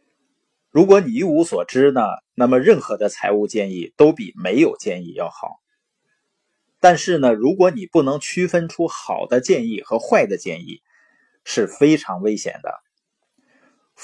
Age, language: 20-39, Chinese